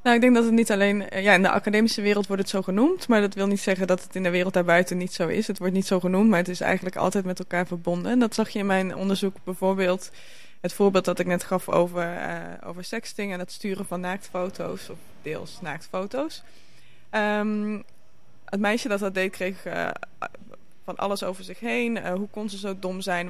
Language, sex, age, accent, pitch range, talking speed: Dutch, female, 20-39, Dutch, 170-195 Hz, 225 wpm